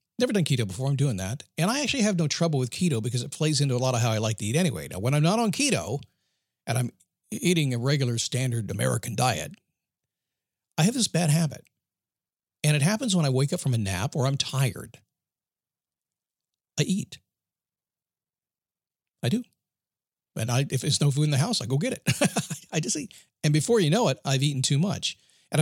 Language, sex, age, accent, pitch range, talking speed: English, male, 50-69, American, 115-150 Hz, 210 wpm